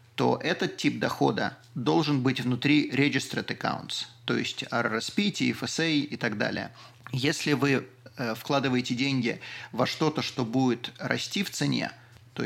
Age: 30-49